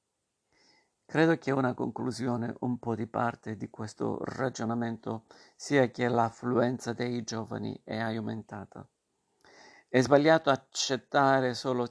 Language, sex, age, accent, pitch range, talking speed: Italian, male, 50-69, native, 115-130 Hz, 110 wpm